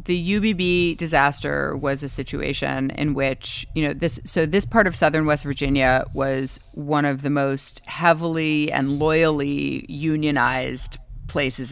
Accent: American